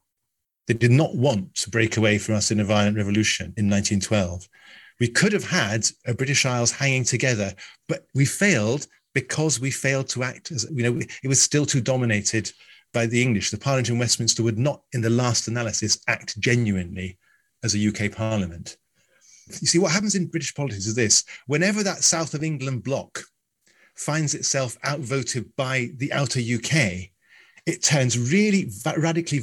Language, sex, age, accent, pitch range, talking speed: English, male, 40-59, British, 110-145 Hz, 175 wpm